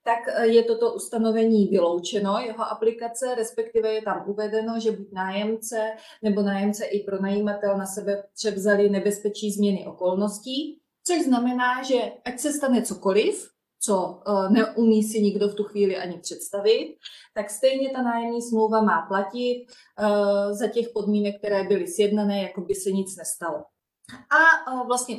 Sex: female